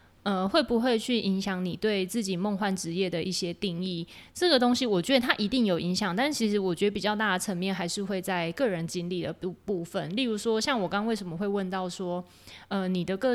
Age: 20-39